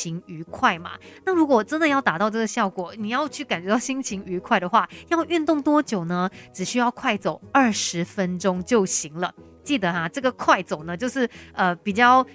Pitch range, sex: 185-260 Hz, female